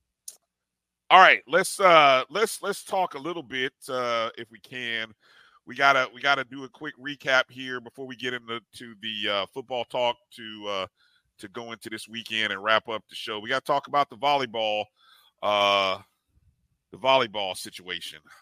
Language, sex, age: English, male, 40-59